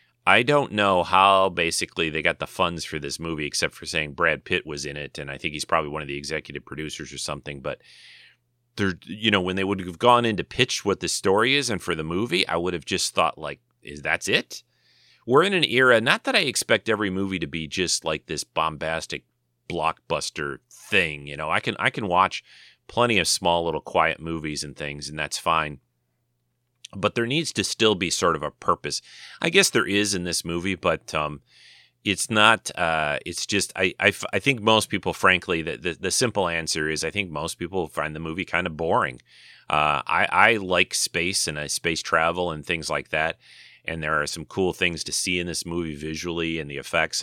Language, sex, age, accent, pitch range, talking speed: English, male, 30-49, American, 75-95 Hz, 220 wpm